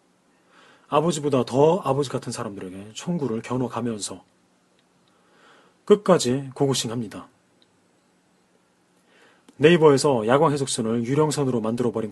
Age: 30-49